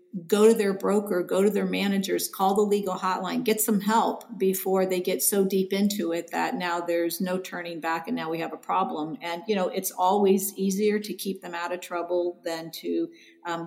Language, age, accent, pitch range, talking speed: English, 50-69, American, 170-195 Hz, 215 wpm